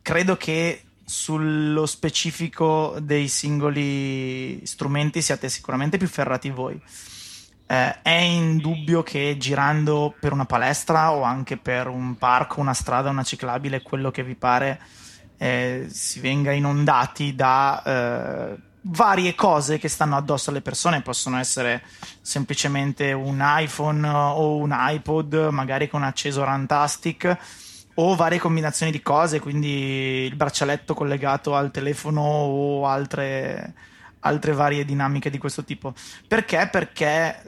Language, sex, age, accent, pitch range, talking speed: Italian, male, 20-39, native, 130-155 Hz, 130 wpm